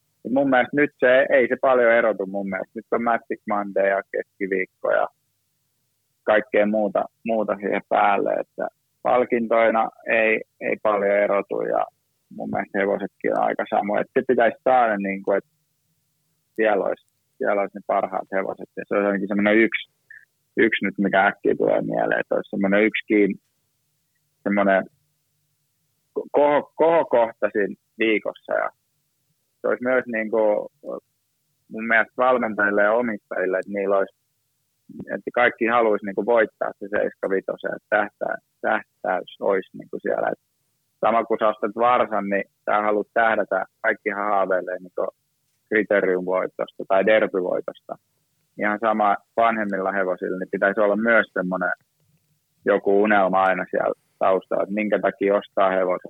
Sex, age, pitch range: male, 30-49, 100-130 Hz